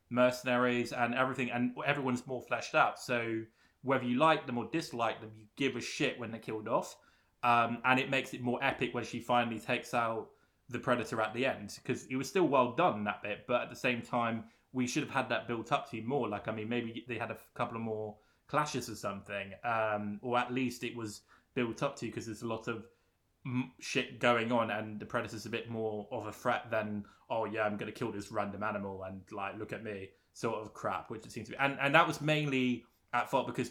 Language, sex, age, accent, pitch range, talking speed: English, male, 20-39, British, 110-125 Hz, 235 wpm